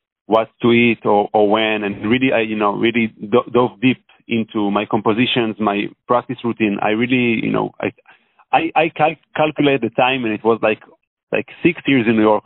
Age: 30-49